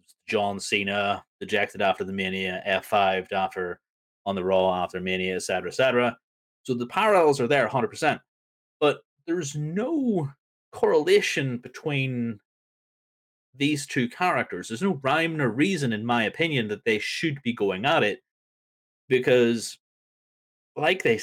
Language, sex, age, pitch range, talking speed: English, male, 30-49, 95-150 Hz, 140 wpm